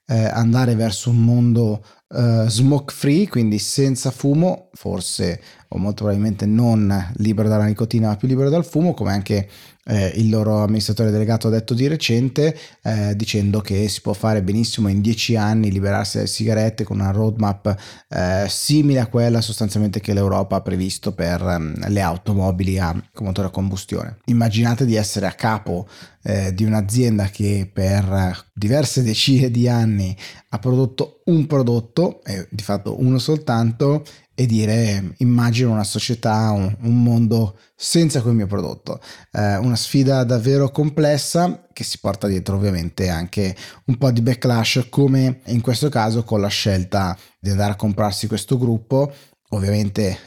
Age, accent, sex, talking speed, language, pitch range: 30-49, native, male, 155 wpm, Italian, 100-120 Hz